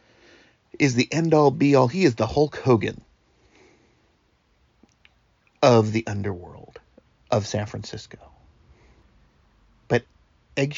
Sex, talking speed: male, 95 wpm